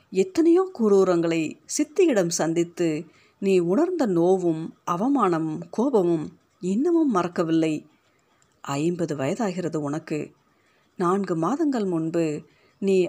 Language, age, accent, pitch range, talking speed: Tamil, 50-69, native, 160-210 Hz, 85 wpm